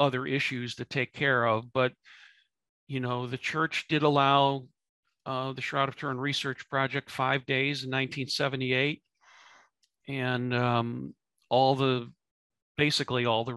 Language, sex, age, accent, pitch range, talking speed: English, male, 50-69, American, 125-150 Hz, 135 wpm